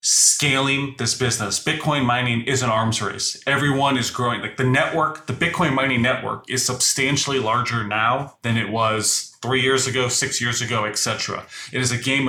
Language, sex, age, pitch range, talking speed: English, male, 30-49, 110-130 Hz, 180 wpm